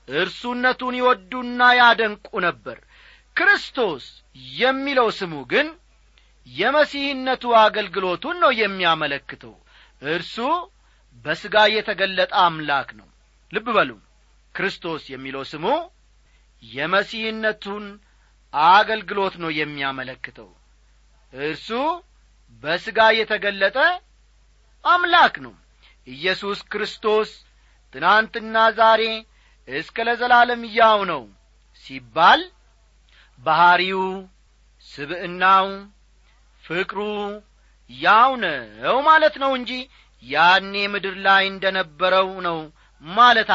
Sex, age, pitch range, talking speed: male, 40-59, 160-235 Hz, 70 wpm